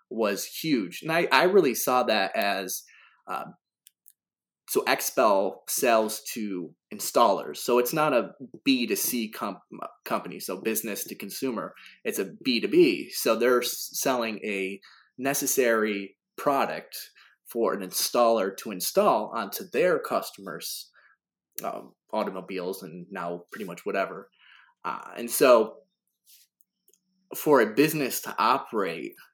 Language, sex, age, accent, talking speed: English, male, 20-39, American, 130 wpm